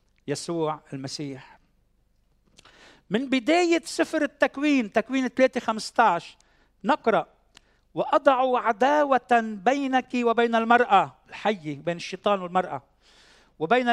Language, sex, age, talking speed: Arabic, male, 50-69, 85 wpm